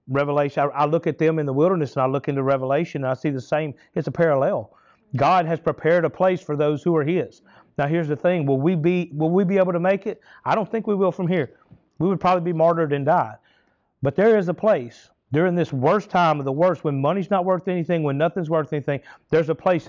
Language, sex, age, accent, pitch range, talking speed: English, male, 40-59, American, 140-175 Hz, 245 wpm